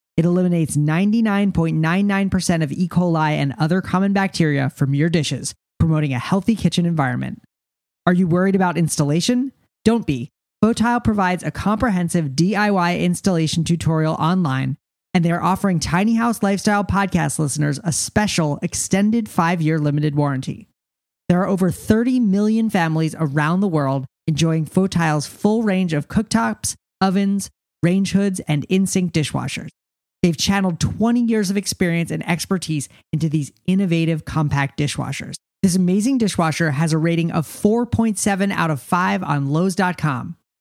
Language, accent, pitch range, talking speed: English, American, 155-195 Hz, 140 wpm